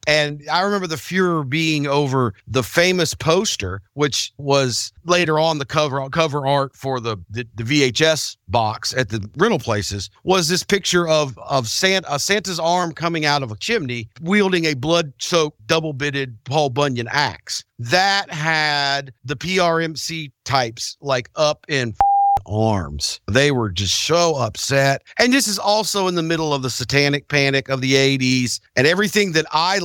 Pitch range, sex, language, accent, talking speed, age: 130-175 Hz, male, English, American, 165 wpm, 50-69